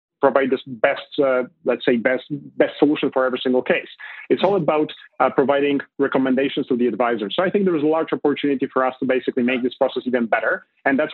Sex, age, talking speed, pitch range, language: male, 30-49, 220 wpm, 130-150 Hz, English